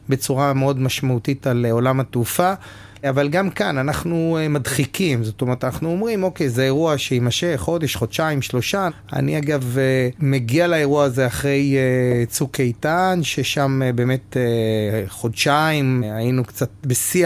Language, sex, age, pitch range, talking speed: Hebrew, male, 30-49, 125-160 Hz, 125 wpm